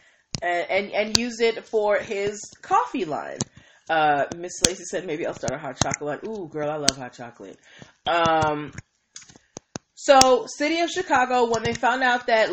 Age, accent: 30-49, American